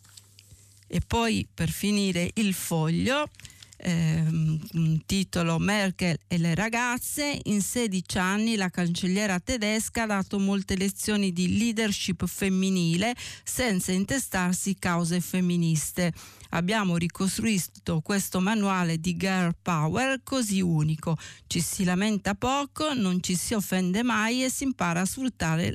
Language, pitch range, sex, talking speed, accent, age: Italian, 170-205 Hz, female, 120 wpm, native, 40-59